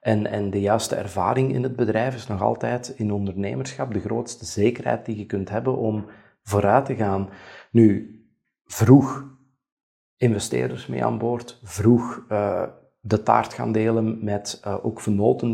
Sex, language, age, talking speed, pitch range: male, Dutch, 40-59, 155 wpm, 105-125 Hz